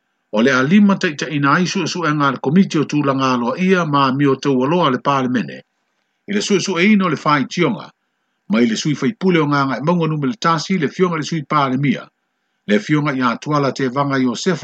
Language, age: Italian, 60-79